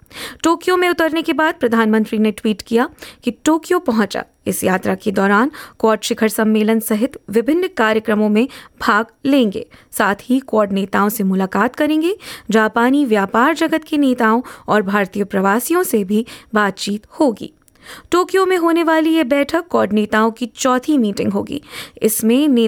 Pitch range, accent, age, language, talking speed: 215-275 Hz, Indian, 20-39, English, 130 wpm